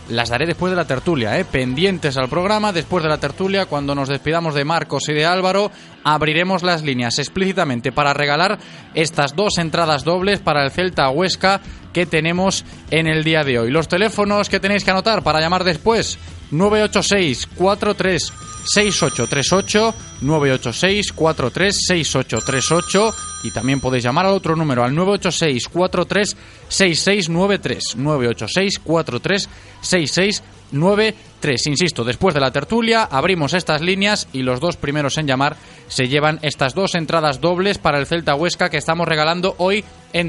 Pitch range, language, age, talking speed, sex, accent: 140-190 Hz, Spanish, 20-39, 145 wpm, male, Spanish